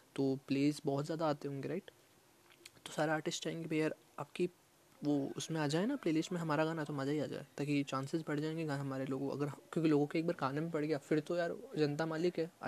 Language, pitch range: Hindi, 145-165 Hz